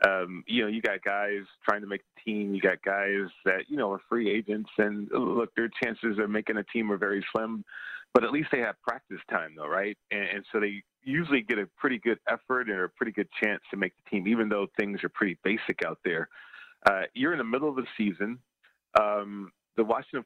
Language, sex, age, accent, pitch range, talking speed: English, male, 40-59, American, 100-115 Hz, 230 wpm